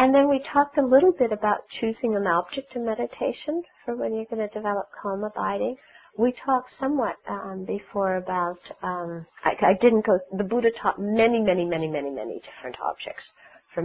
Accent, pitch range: American, 170-250 Hz